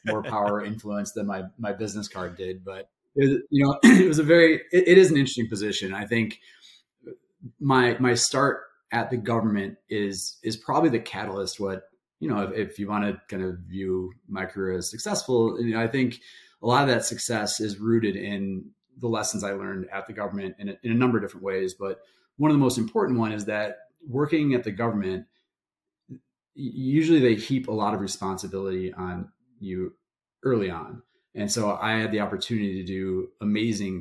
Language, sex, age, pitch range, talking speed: English, male, 30-49, 95-120 Hz, 185 wpm